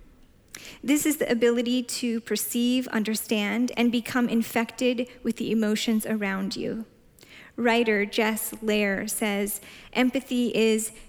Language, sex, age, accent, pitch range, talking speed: English, female, 10-29, American, 220-245 Hz, 115 wpm